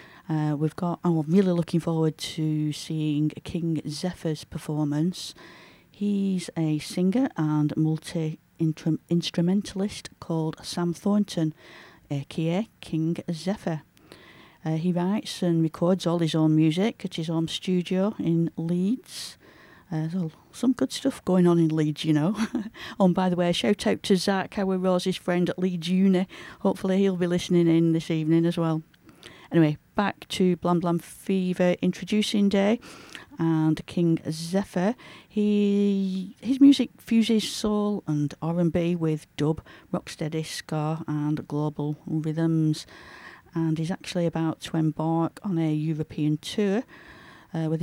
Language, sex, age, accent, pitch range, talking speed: English, female, 40-59, British, 160-190 Hz, 140 wpm